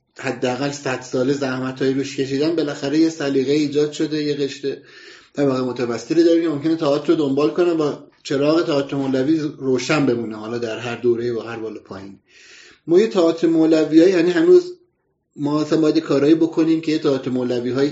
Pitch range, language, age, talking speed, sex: 125-155 Hz, Persian, 30-49, 155 wpm, male